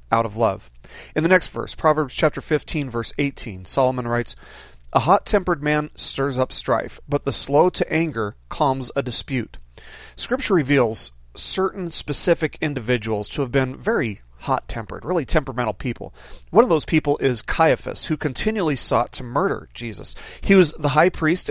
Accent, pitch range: American, 120-155 Hz